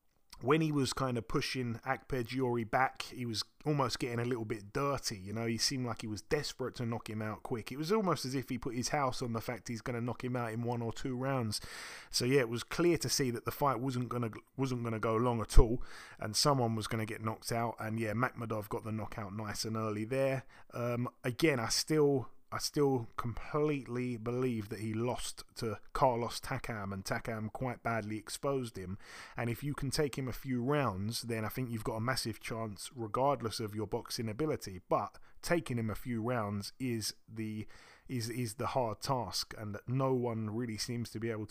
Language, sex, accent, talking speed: English, male, British, 220 wpm